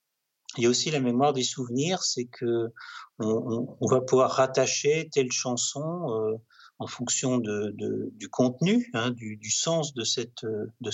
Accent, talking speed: French, 155 wpm